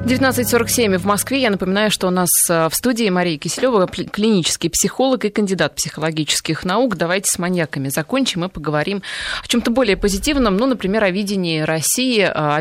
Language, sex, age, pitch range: Russian, female, 20-39, 150-205 Hz